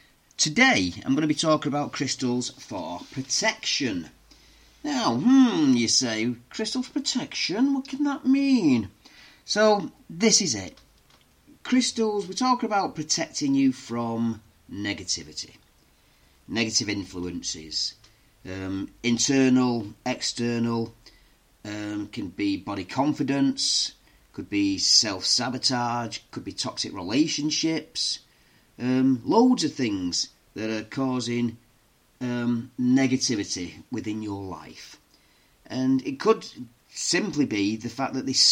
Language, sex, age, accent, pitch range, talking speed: English, male, 40-59, British, 110-160 Hz, 110 wpm